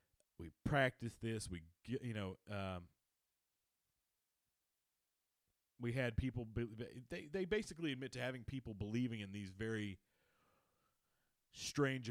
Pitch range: 105-140 Hz